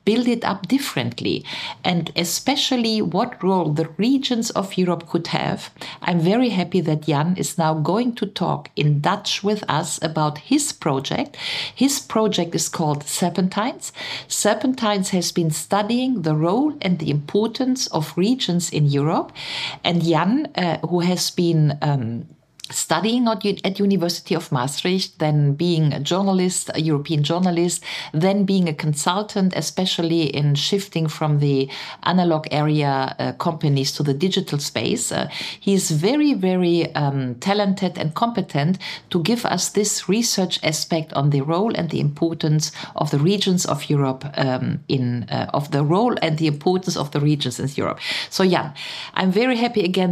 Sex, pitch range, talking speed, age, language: female, 155-200 Hz, 160 wpm, 50-69, German